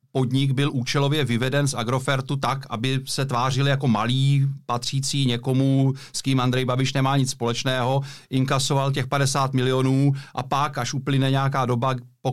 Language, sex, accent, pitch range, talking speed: Czech, male, native, 125-140 Hz, 155 wpm